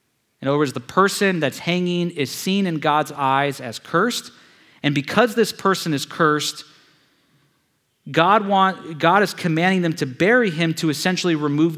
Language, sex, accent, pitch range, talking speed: English, male, American, 140-175 Hz, 165 wpm